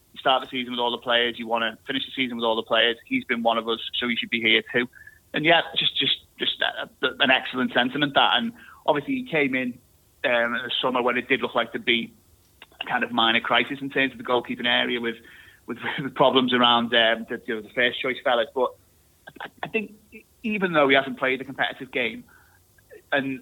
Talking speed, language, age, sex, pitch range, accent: 240 wpm, English, 30-49, male, 115-135 Hz, British